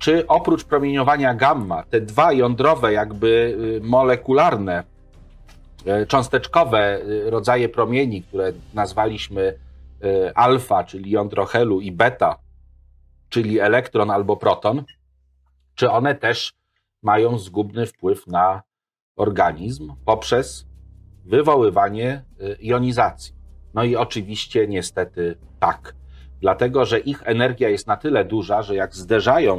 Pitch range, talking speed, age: 95-120 Hz, 105 wpm, 40-59